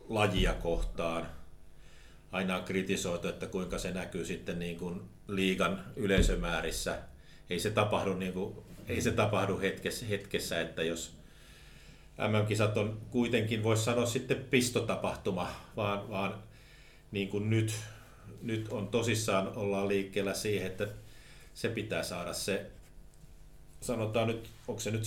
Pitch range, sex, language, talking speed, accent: 95-110 Hz, male, Finnish, 130 wpm, native